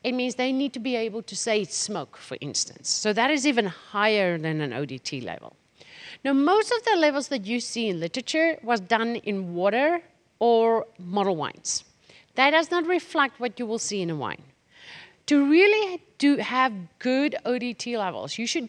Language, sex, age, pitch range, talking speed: English, female, 50-69, 200-280 Hz, 185 wpm